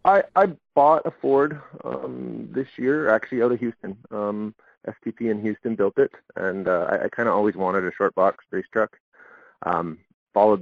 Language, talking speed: English, 185 wpm